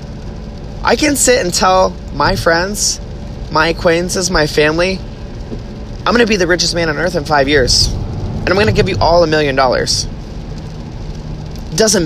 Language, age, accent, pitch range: English, 30-49, American, 110-165 Hz